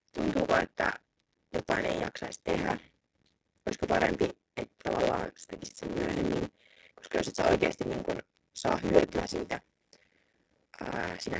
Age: 30-49